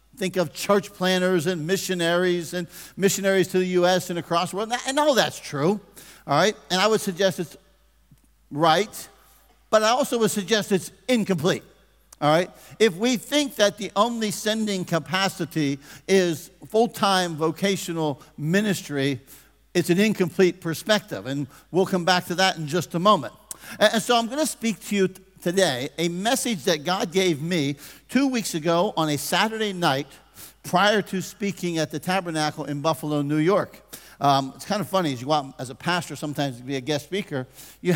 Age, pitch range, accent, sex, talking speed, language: 50-69, 150-195 Hz, American, male, 180 wpm, English